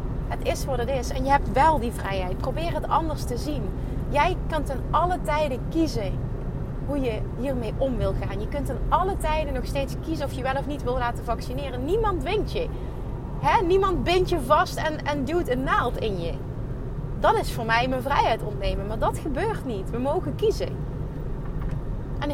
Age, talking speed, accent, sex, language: 30-49, 200 wpm, Dutch, female, Dutch